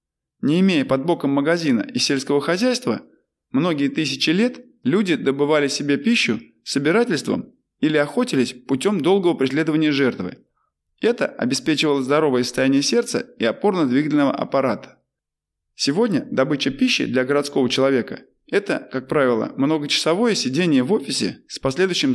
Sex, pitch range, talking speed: male, 135-225 Hz, 120 wpm